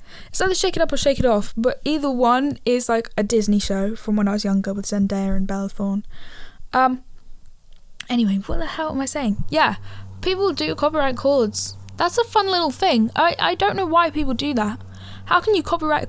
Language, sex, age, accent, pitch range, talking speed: English, female, 10-29, British, 195-270 Hz, 210 wpm